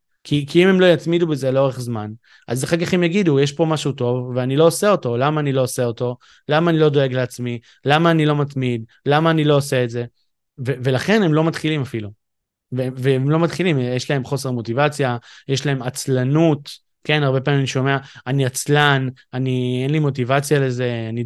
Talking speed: 205 wpm